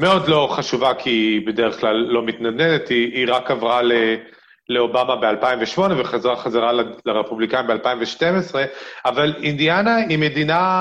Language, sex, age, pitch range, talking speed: Hebrew, male, 30-49, 125-175 Hz, 135 wpm